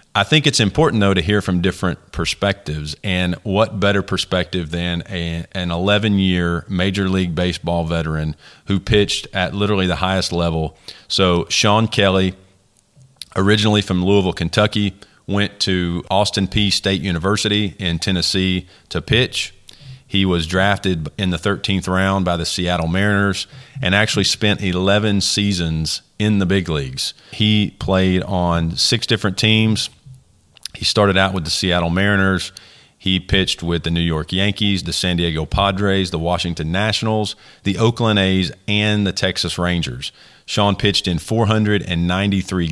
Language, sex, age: English, male, 40-59